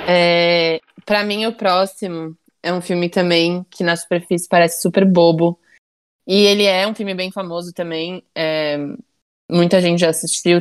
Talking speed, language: 160 wpm, Portuguese